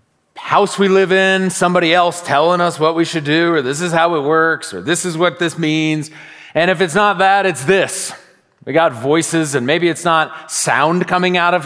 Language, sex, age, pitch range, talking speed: English, male, 40-59, 150-180 Hz, 215 wpm